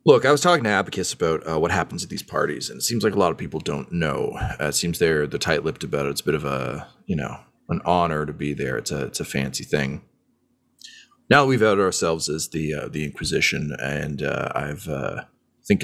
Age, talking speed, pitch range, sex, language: 30-49, 245 wpm, 75-105 Hz, male, English